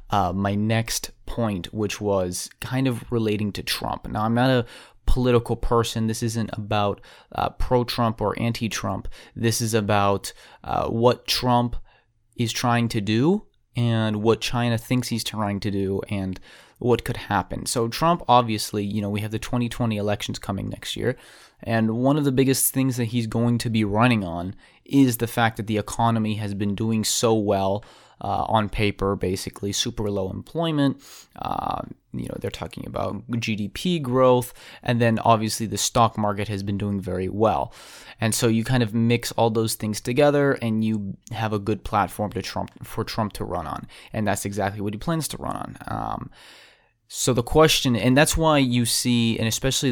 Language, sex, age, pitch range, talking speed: English, male, 30-49, 105-120 Hz, 185 wpm